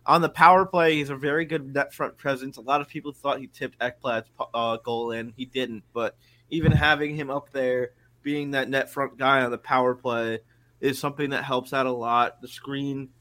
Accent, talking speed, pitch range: American, 220 wpm, 120-135 Hz